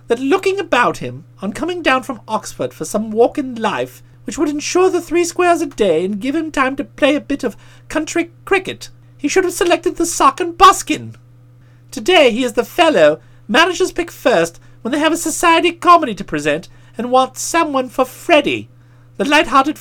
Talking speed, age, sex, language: 195 wpm, 40-59, male, English